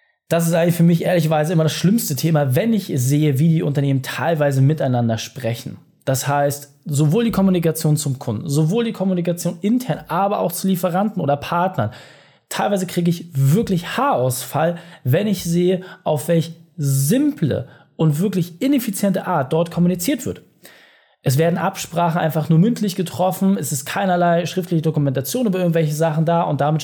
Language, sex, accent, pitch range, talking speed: German, male, German, 145-190 Hz, 160 wpm